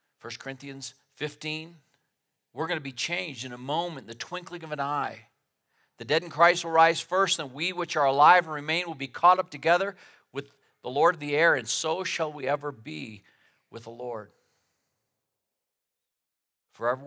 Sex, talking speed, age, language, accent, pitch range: male, 180 wpm, 50-69, English, American, 115-155 Hz